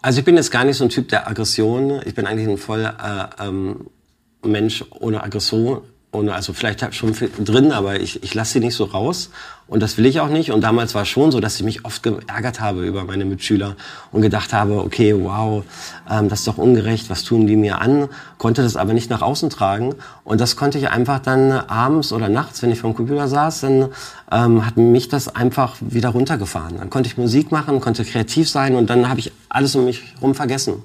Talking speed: 230 wpm